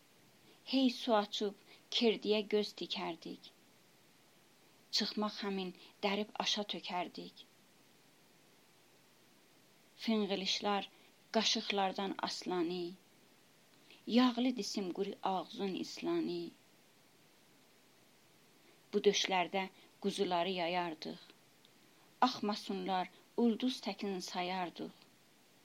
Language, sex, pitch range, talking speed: Persian, female, 190-230 Hz, 65 wpm